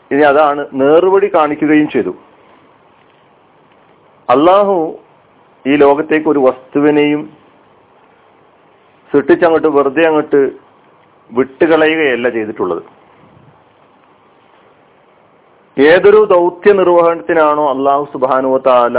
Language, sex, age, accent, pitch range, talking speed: Malayalam, male, 40-59, native, 145-180 Hz, 55 wpm